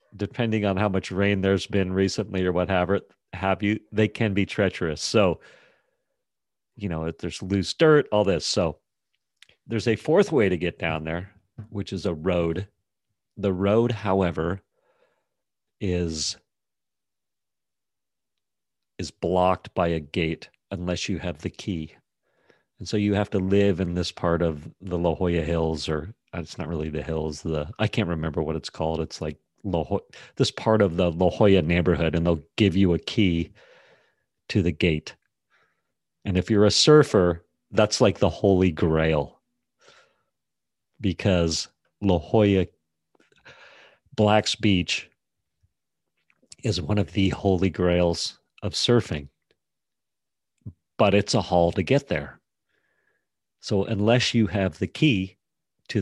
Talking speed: 145 wpm